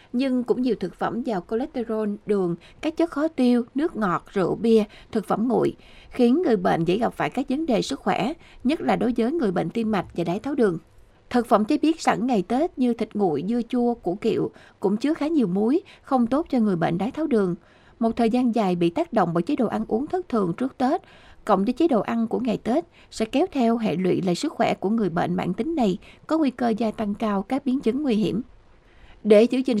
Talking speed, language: 245 wpm, Vietnamese